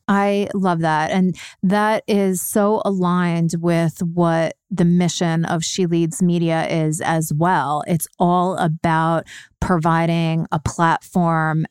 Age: 30-49